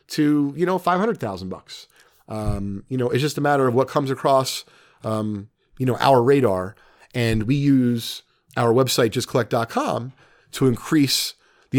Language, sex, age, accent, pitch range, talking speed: English, male, 40-59, American, 120-150 Hz, 155 wpm